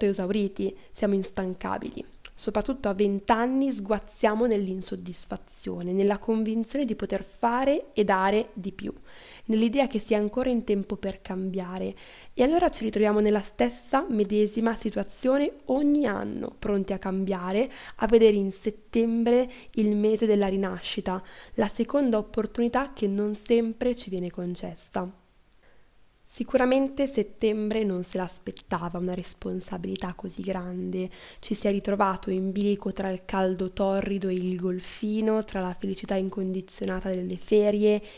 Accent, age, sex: native, 20-39, female